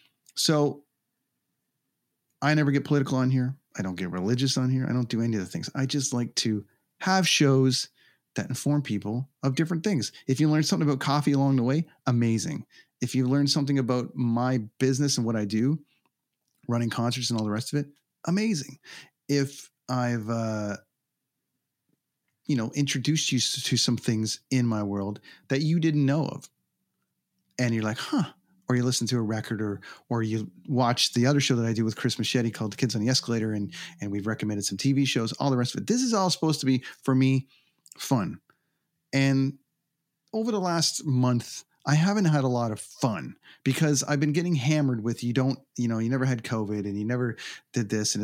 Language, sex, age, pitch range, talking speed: English, male, 30-49, 115-145 Hz, 200 wpm